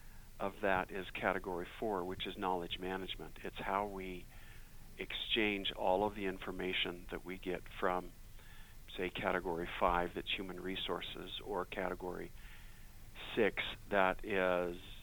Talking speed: 120 wpm